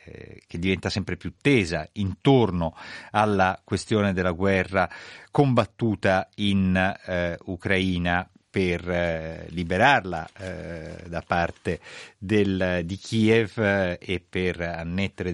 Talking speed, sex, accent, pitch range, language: 105 wpm, male, native, 85-105 Hz, Italian